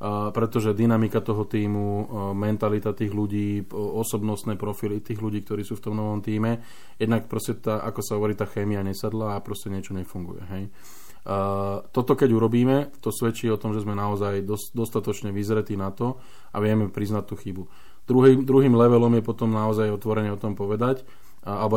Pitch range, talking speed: 100-115 Hz, 170 wpm